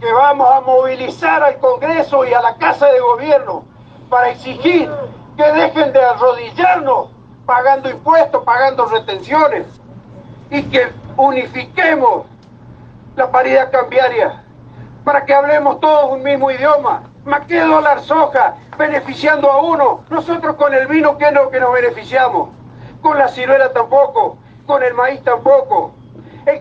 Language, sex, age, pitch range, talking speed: Spanish, male, 50-69, 260-315 Hz, 140 wpm